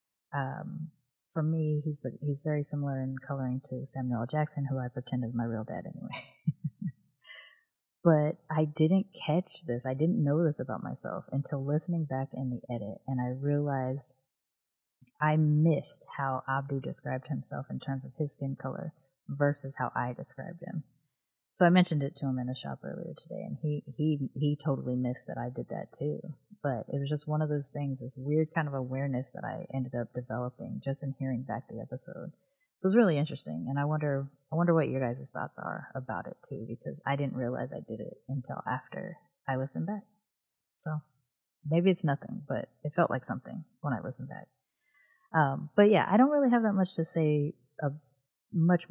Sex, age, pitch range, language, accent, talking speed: female, 30-49, 130-155 Hz, English, American, 200 wpm